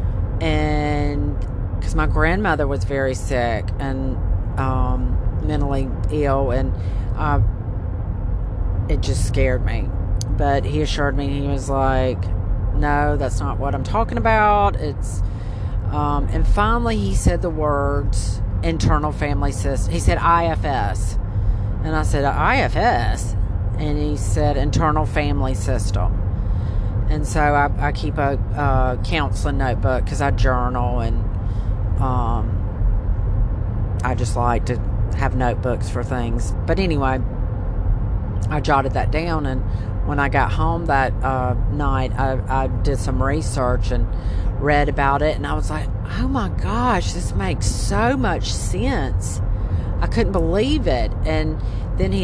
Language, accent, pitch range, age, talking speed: English, American, 95-120 Hz, 40-59, 135 wpm